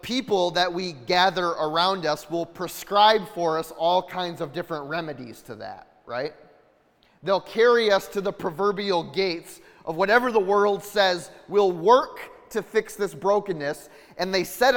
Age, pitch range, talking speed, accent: 30-49, 155-200 Hz, 160 wpm, American